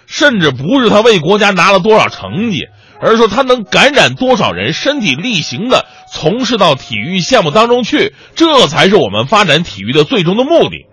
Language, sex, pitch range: Chinese, male, 140-235 Hz